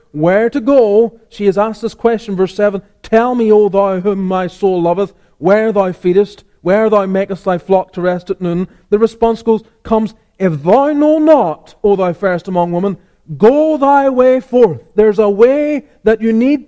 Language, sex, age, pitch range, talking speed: English, male, 30-49, 195-245 Hz, 185 wpm